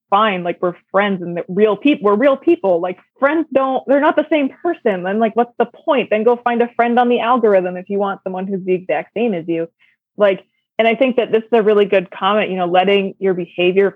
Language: English